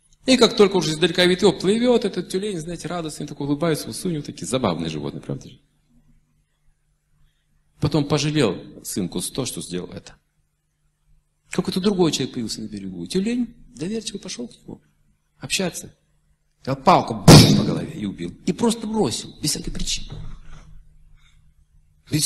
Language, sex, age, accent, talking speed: Russian, male, 40-59, native, 145 wpm